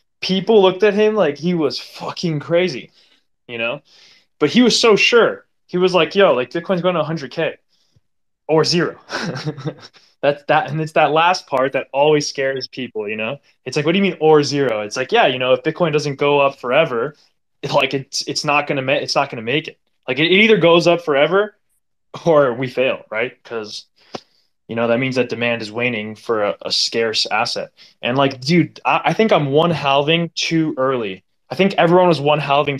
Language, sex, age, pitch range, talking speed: English, male, 20-39, 130-170 Hz, 210 wpm